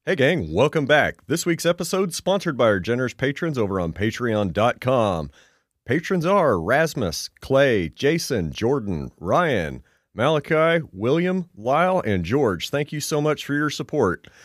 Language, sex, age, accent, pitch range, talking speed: English, male, 30-49, American, 105-160 Hz, 140 wpm